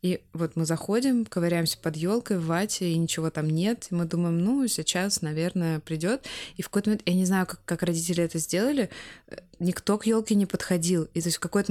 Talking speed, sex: 215 wpm, female